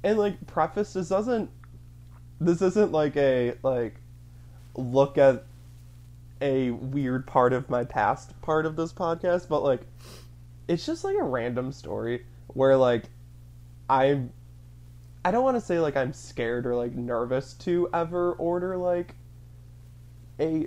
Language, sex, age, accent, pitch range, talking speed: English, male, 20-39, American, 120-155 Hz, 140 wpm